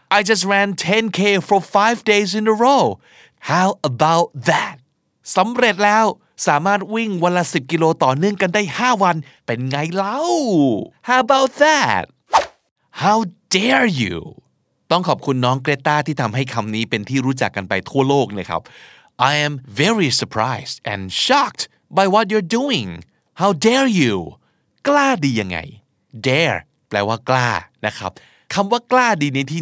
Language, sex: Thai, male